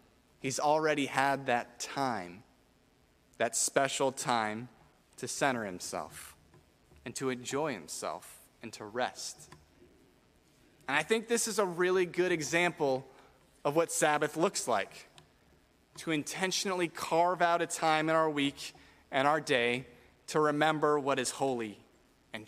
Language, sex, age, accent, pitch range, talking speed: English, male, 30-49, American, 135-170 Hz, 135 wpm